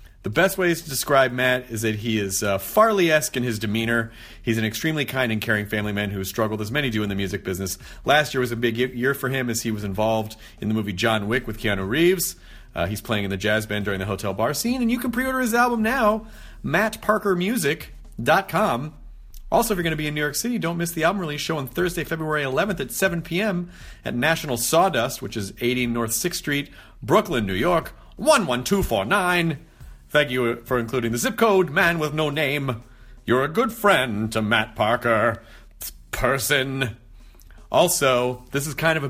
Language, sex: English, male